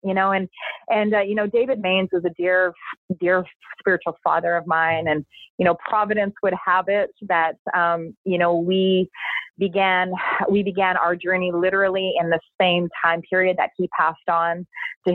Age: 30-49